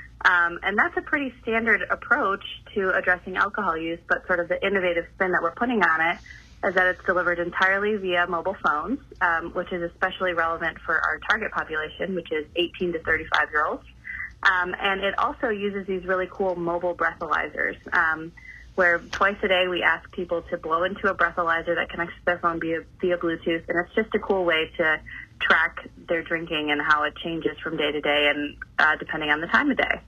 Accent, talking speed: American, 200 wpm